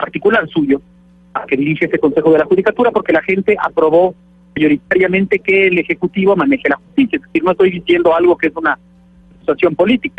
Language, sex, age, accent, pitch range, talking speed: Spanish, male, 50-69, Mexican, 165-205 Hz, 190 wpm